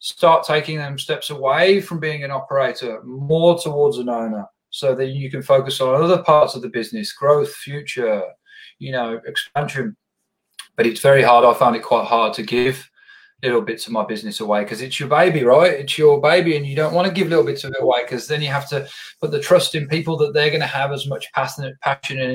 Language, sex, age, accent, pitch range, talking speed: English, male, 30-49, British, 120-160 Hz, 225 wpm